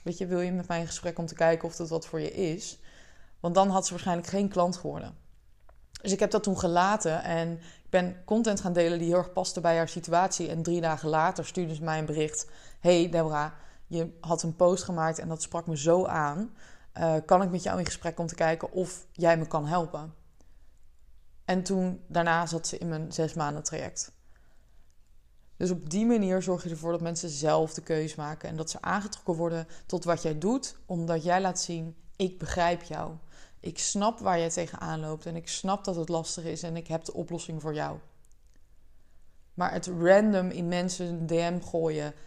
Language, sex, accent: Dutch, female, Dutch